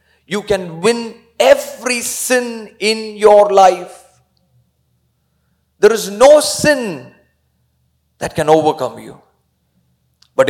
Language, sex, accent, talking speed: Malayalam, male, native, 95 wpm